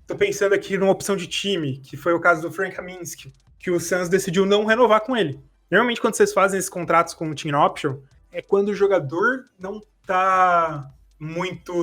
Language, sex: Portuguese, male